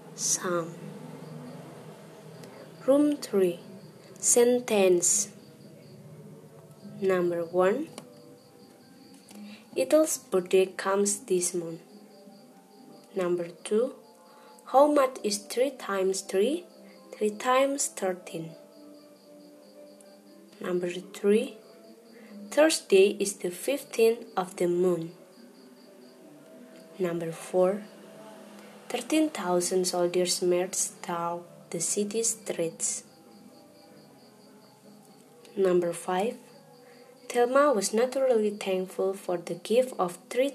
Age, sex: 20-39, female